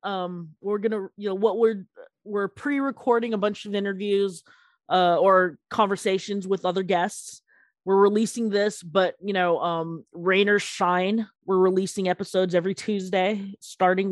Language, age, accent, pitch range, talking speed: English, 20-39, American, 165-200 Hz, 150 wpm